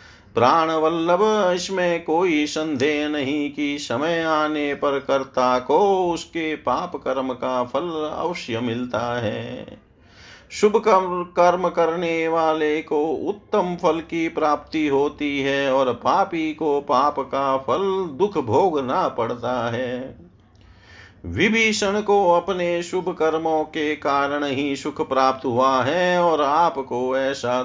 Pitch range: 125-165 Hz